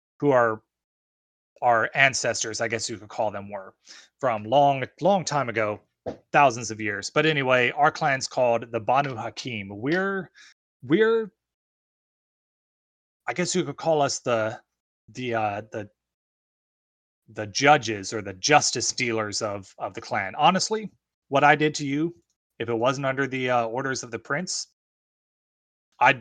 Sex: male